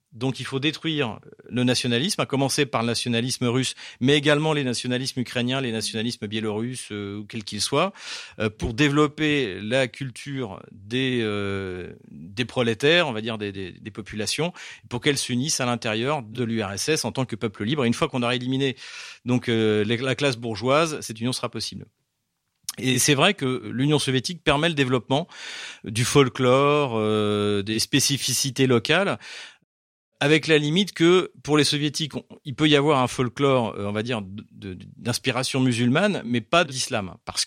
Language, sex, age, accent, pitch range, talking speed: French, male, 40-59, French, 110-140 Hz, 170 wpm